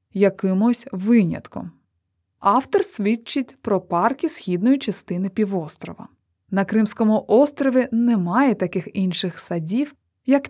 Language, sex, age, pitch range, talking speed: Ukrainian, female, 20-39, 180-250 Hz, 95 wpm